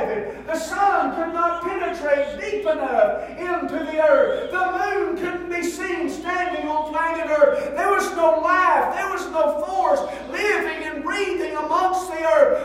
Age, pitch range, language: 50-69, 310-350 Hz, English